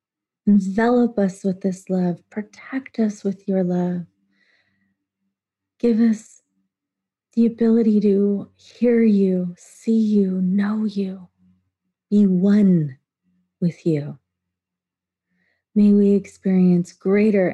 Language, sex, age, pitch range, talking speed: English, female, 30-49, 175-205 Hz, 100 wpm